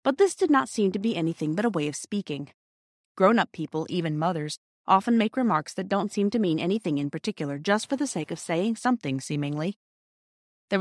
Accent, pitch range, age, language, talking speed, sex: American, 165-235 Hz, 30-49, English, 205 wpm, female